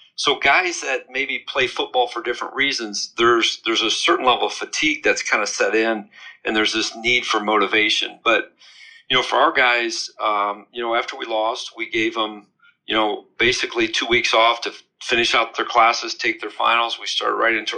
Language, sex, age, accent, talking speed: English, male, 40-59, American, 205 wpm